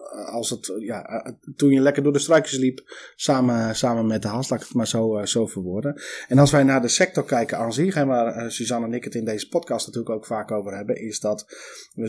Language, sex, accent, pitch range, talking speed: Dutch, male, Dutch, 115-145 Hz, 240 wpm